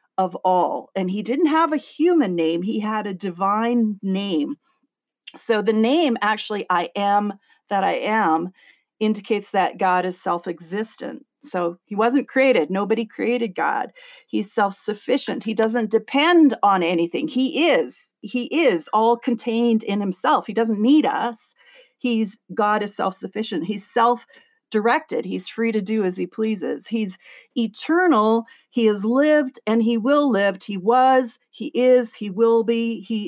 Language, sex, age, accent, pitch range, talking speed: English, female, 40-59, American, 205-260 Hz, 155 wpm